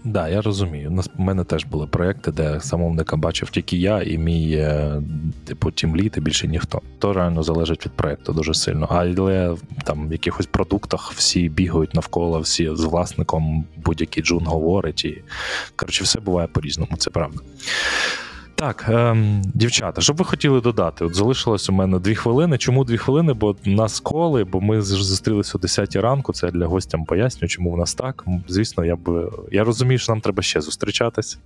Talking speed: 180 wpm